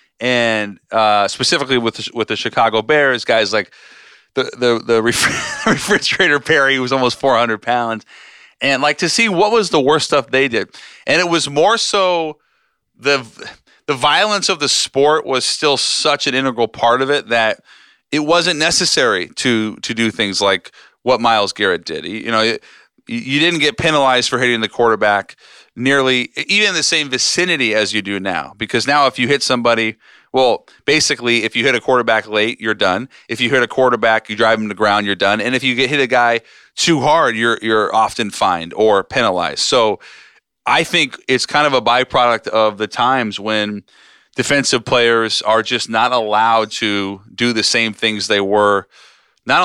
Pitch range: 110-145 Hz